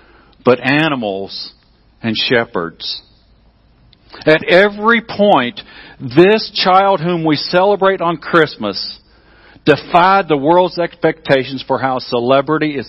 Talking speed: 100 wpm